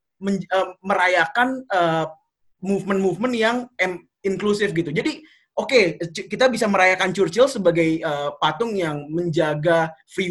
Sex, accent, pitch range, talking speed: male, native, 165-205 Hz, 135 wpm